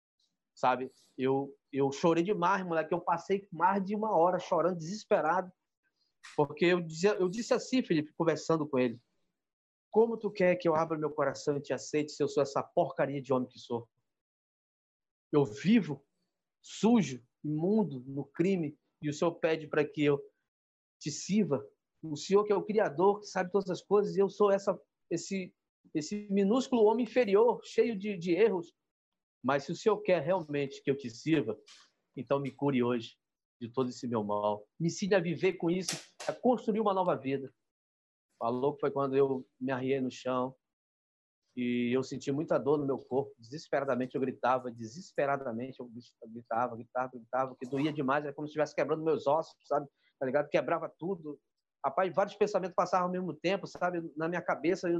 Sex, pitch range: male, 130-190 Hz